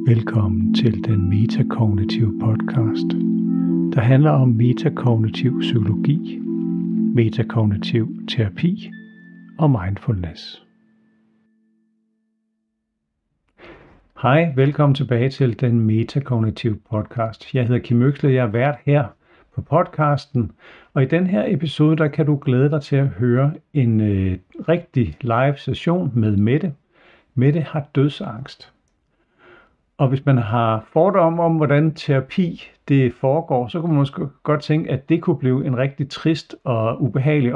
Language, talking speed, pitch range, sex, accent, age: Danish, 125 wpm, 115-155 Hz, male, native, 60-79